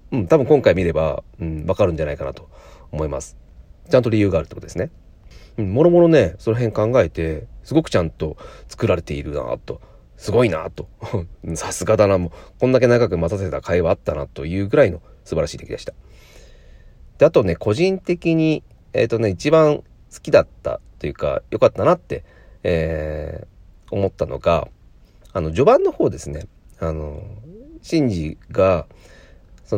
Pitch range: 80-115 Hz